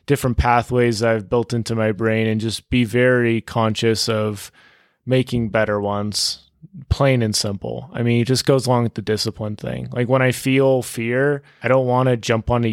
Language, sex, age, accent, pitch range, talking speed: English, male, 20-39, American, 110-130 Hz, 185 wpm